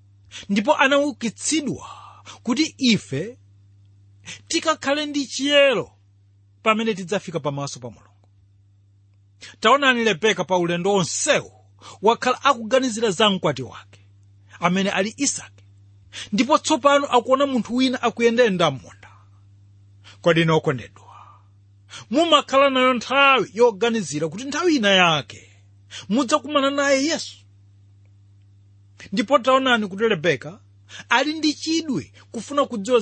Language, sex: English, male